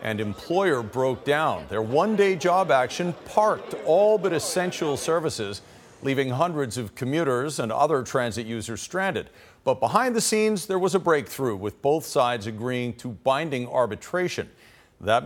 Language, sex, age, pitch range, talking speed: English, male, 50-69, 110-145 Hz, 150 wpm